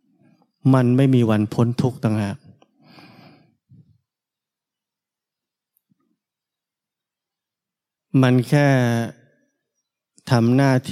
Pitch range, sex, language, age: 115-135 Hz, male, Thai, 20-39